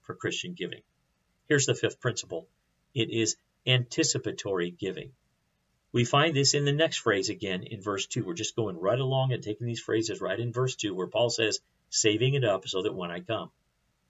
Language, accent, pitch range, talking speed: English, American, 105-125 Hz, 195 wpm